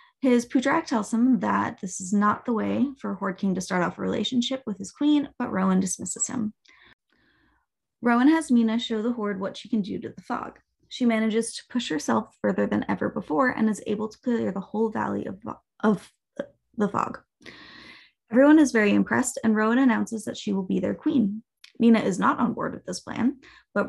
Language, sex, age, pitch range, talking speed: English, female, 20-39, 210-260 Hz, 205 wpm